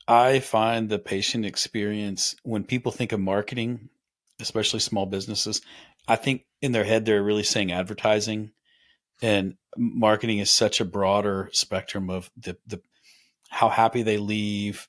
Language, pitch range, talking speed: English, 100-120 Hz, 145 wpm